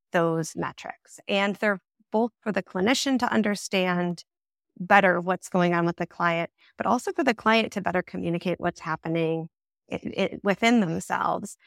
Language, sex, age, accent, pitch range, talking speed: English, female, 30-49, American, 175-215 Hz, 150 wpm